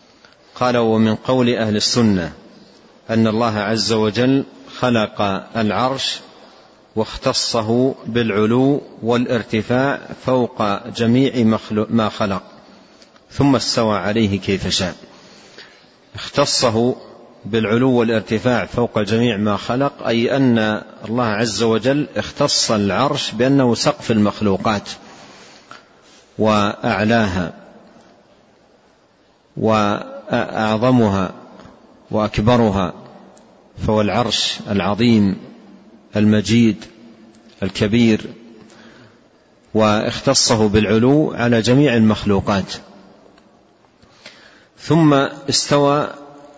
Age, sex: 50-69, male